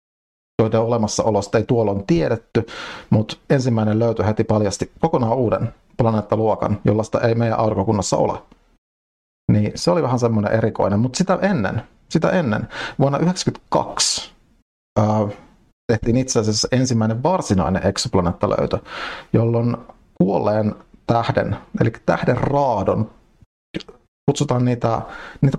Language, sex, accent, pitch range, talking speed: Finnish, male, native, 105-130 Hz, 115 wpm